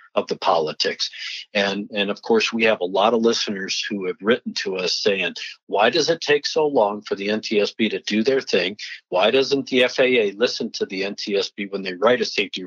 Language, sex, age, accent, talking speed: English, male, 50-69, American, 215 wpm